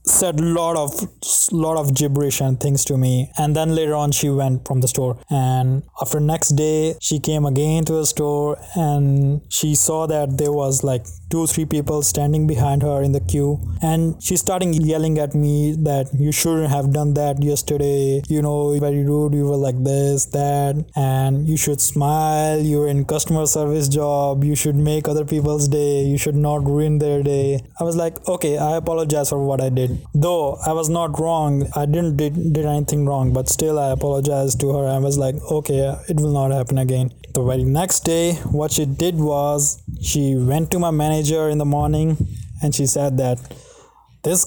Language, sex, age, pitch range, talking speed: English, male, 20-39, 135-155 Hz, 195 wpm